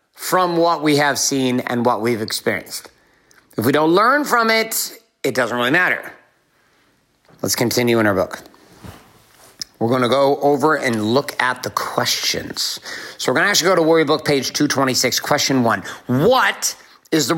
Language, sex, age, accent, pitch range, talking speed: English, male, 50-69, American, 125-160 Hz, 165 wpm